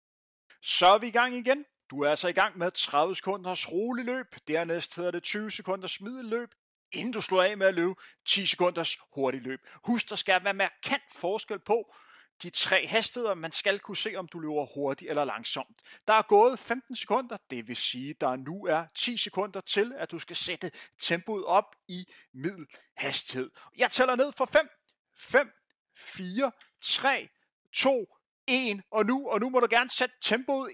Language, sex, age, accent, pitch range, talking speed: Danish, male, 30-49, native, 185-275 Hz, 190 wpm